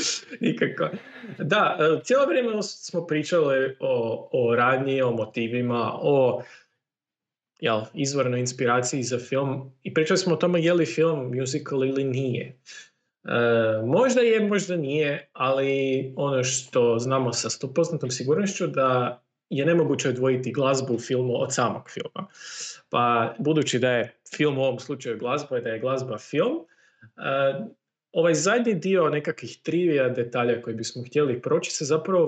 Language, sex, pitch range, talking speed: Croatian, male, 120-150 Hz, 145 wpm